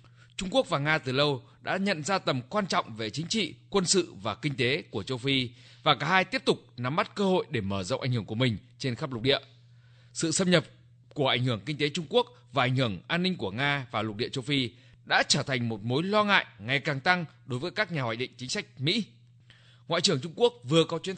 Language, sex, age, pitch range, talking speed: Vietnamese, male, 20-39, 120-170 Hz, 260 wpm